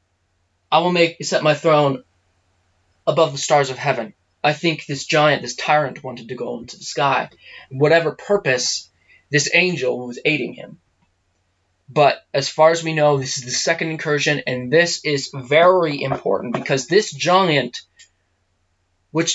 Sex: male